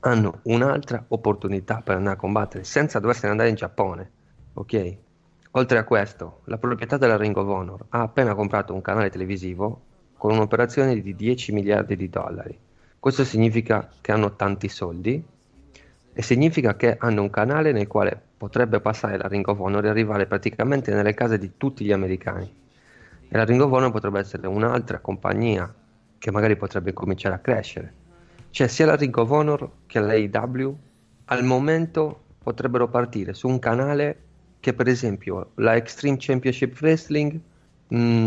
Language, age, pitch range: Italian, 30-49, 100-125 Hz